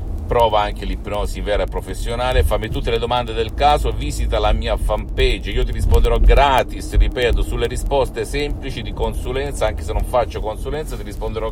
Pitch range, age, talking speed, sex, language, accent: 90-125 Hz, 50-69, 170 wpm, male, Italian, native